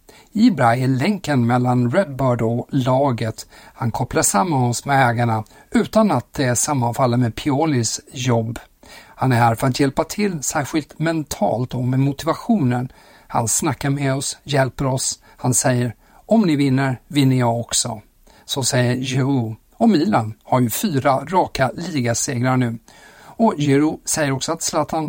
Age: 50-69